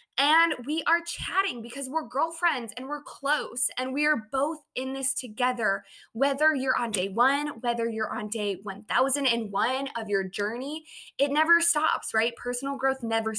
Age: 10-29